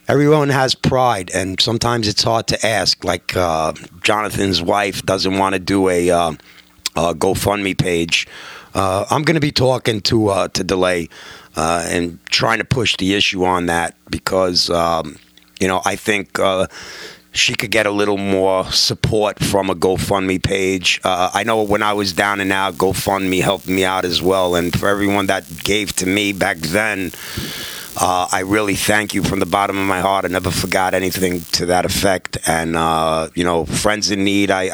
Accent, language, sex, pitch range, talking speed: American, English, male, 90-100 Hz, 190 wpm